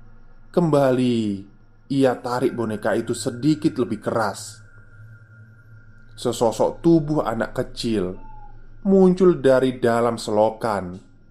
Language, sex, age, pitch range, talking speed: Indonesian, male, 20-39, 110-130 Hz, 85 wpm